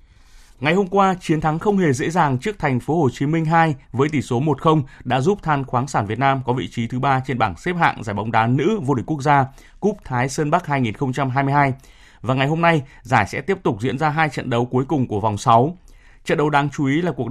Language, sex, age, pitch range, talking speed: Vietnamese, male, 20-39, 120-155 Hz, 255 wpm